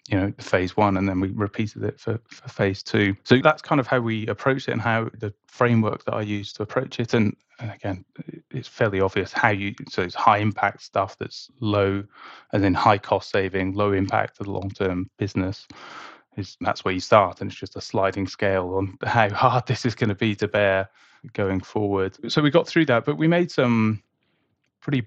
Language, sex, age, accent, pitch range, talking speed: English, male, 20-39, British, 100-120 Hz, 215 wpm